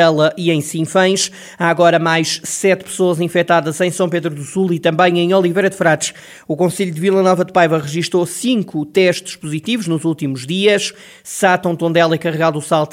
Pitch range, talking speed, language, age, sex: 160-185 Hz, 190 wpm, Portuguese, 20-39, male